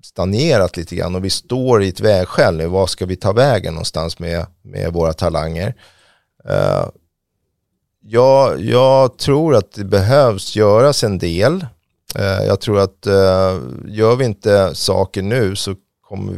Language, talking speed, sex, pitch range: Swedish, 145 wpm, male, 90-110 Hz